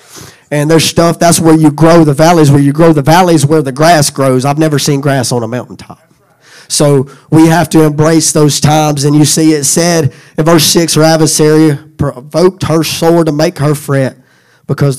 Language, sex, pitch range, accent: English, male, 140-160 Hz, American